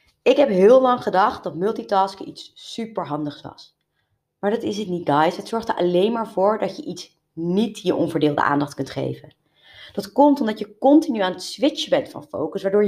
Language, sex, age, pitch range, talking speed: Dutch, female, 30-49, 170-245 Hz, 200 wpm